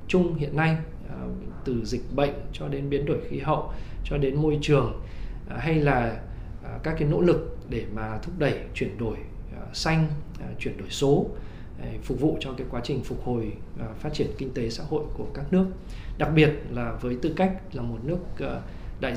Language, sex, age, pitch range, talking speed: Vietnamese, male, 20-39, 115-150 Hz, 185 wpm